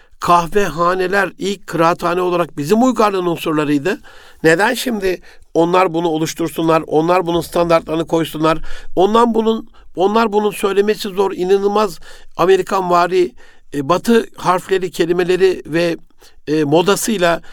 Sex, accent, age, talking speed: male, native, 60-79, 105 wpm